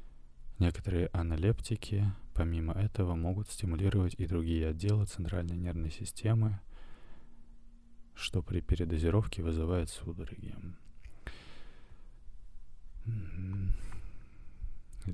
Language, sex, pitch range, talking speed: Russian, male, 85-100 Hz, 70 wpm